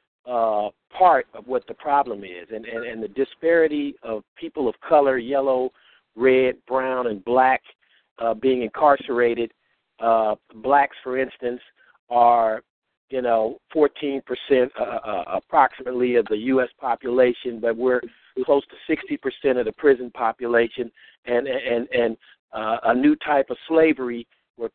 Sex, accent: male, American